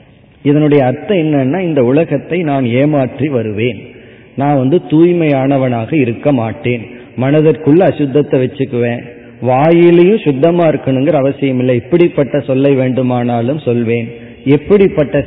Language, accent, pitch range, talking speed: Tamil, native, 125-150 Hz, 100 wpm